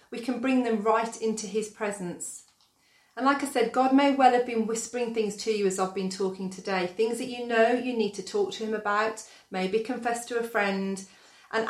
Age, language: 40-59, English